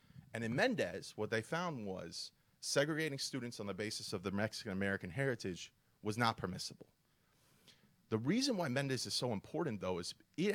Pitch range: 100-125 Hz